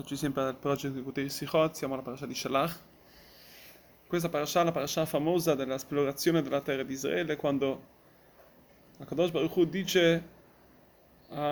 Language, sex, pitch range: Italian, male, 145-180 Hz